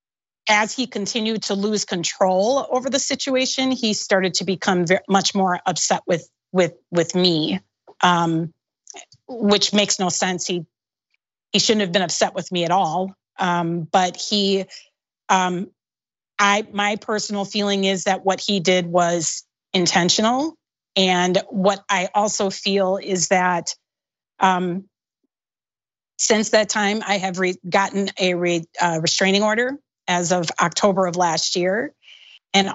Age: 30-49